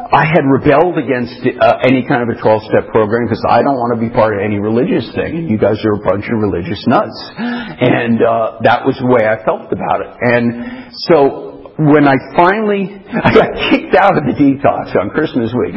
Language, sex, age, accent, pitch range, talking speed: English, male, 50-69, American, 120-185 Hz, 210 wpm